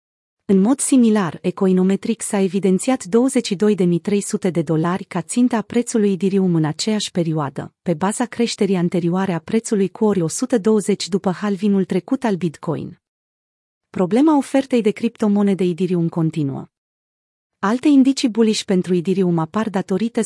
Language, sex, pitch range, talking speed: Romanian, female, 175-220 Hz, 125 wpm